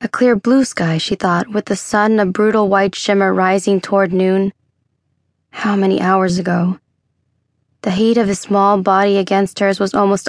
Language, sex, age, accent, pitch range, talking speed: English, female, 20-39, American, 180-215 Hz, 180 wpm